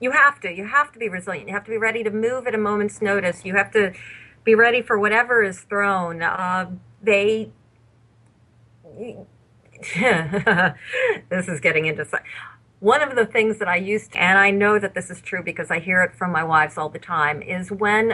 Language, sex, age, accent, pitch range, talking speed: English, female, 40-59, American, 175-225 Hz, 200 wpm